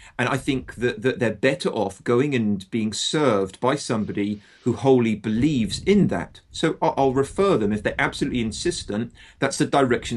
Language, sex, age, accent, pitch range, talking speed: English, male, 40-59, British, 110-155 Hz, 185 wpm